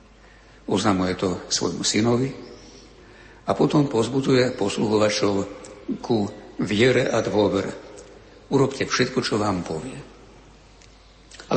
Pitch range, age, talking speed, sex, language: 100-120 Hz, 60-79, 95 wpm, male, Slovak